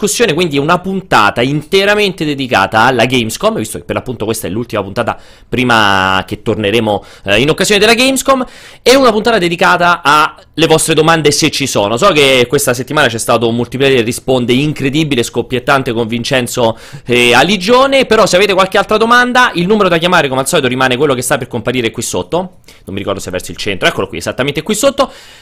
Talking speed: 195 wpm